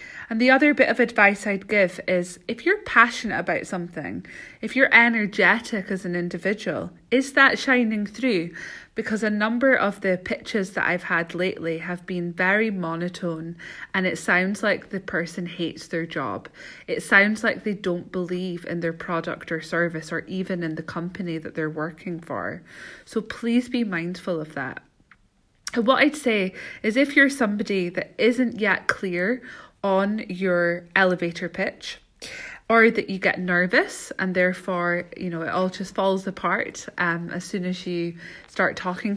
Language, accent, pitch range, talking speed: English, British, 175-225 Hz, 165 wpm